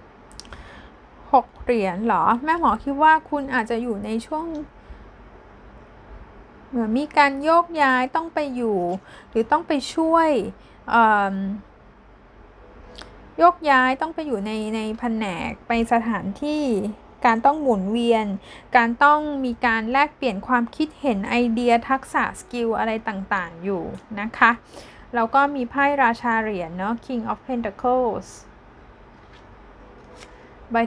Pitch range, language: 220-275 Hz, Thai